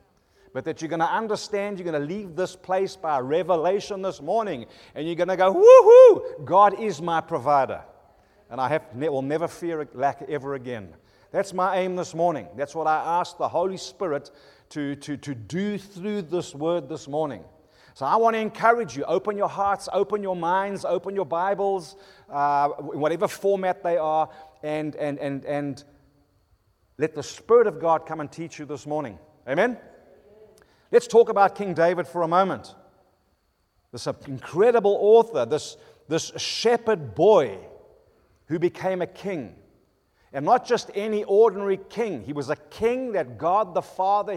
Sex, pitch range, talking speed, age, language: male, 145-200 Hz, 170 wpm, 40-59, English